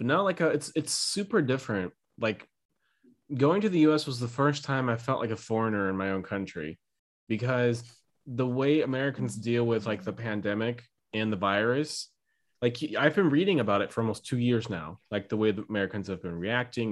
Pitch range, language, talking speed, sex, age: 105-130 Hz, English, 205 wpm, male, 20-39